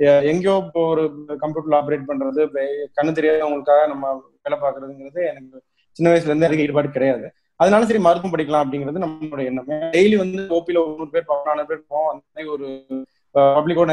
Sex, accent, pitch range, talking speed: male, native, 150-190 Hz, 165 wpm